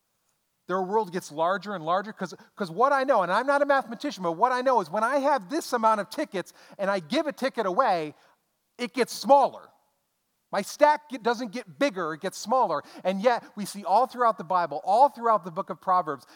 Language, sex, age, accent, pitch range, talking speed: English, male, 40-59, American, 135-220 Hz, 215 wpm